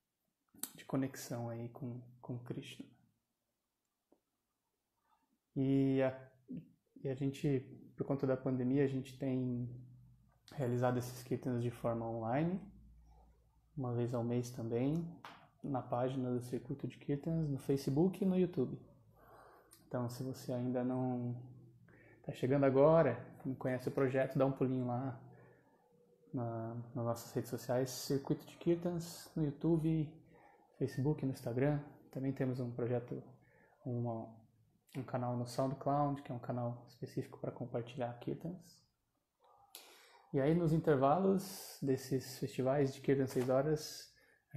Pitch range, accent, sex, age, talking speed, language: 125-145 Hz, Brazilian, male, 20-39, 130 wpm, Portuguese